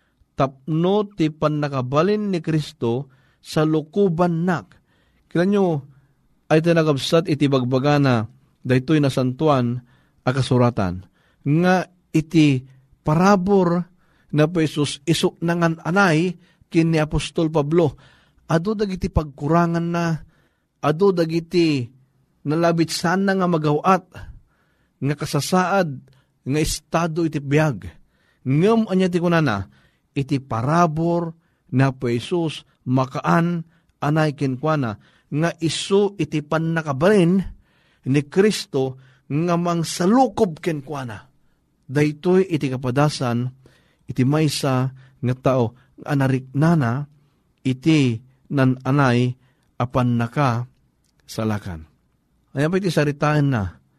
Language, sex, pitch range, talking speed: Filipino, male, 130-170 Hz, 95 wpm